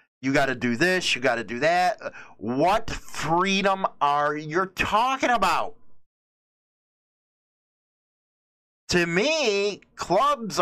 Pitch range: 135-190 Hz